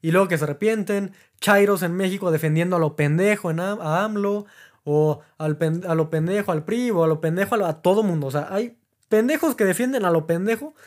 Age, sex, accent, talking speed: 20-39, male, Mexican, 215 wpm